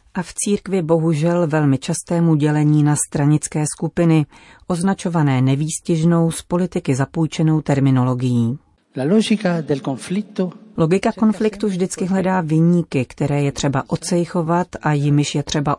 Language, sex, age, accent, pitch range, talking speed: Czech, female, 40-59, native, 145-175 Hz, 110 wpm